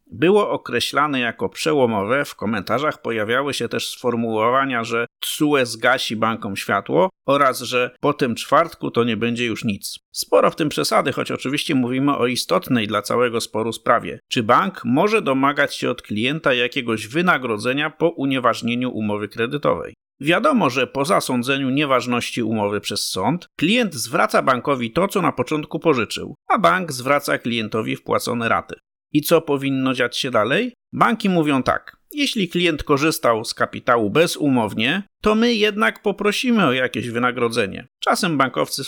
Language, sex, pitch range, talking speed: Polish, male, 120-160 Hz, 150 wpm